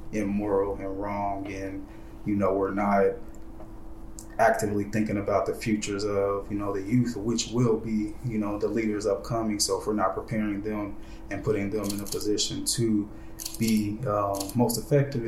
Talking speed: 170 wpm